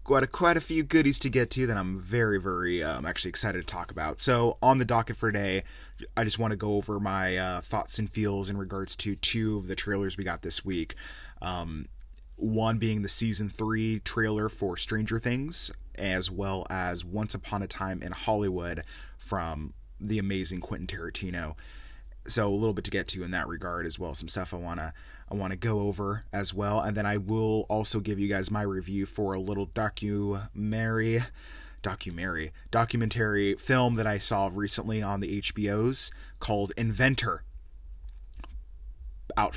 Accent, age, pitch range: American, 30-49, 90-110 Hz